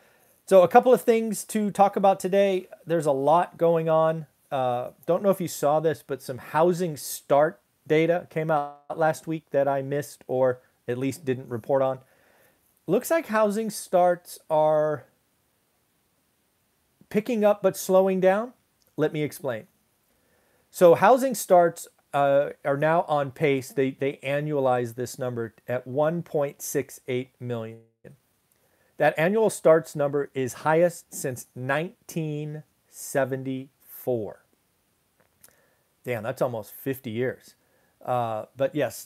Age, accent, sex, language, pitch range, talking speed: 40-59, American, male, English, 130-170 Hz, 130 wpm